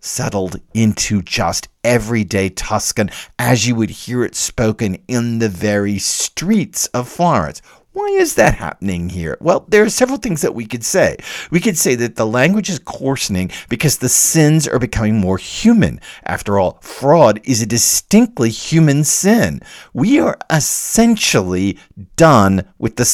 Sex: male